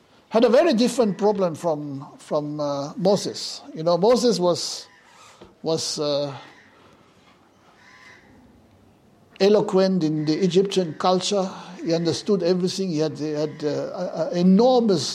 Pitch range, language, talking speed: 160-205 Hz, English, 125 wpm